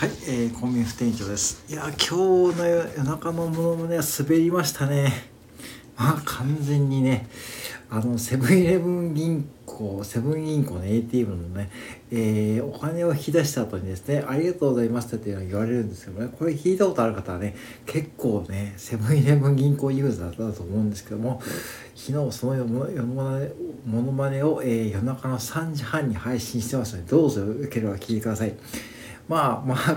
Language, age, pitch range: Japanese, 60-79, 110-155 Hz